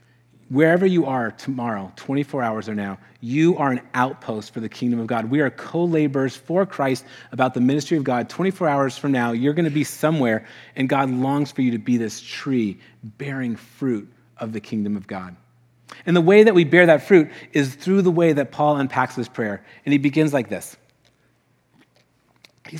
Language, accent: English, American